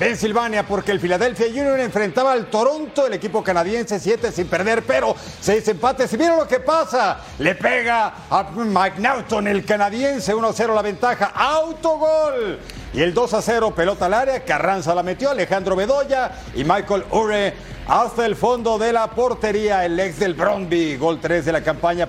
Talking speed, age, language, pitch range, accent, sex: 170 wpm, 50-69, Spanish, 185-245 Hz, Mexican, male